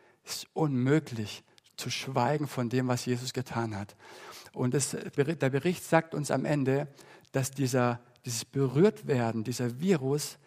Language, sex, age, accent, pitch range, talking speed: German, male, 60-79, German, 125-150 Hz, 145 wpm